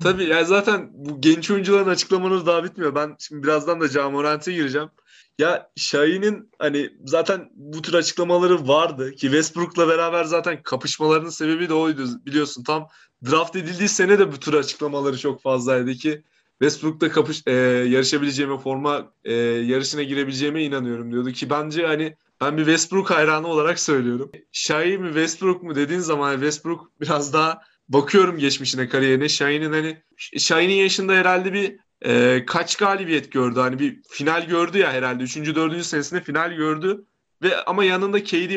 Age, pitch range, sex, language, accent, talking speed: 20-39, 140-175 Hz, male, Turkish, native, 155 wpm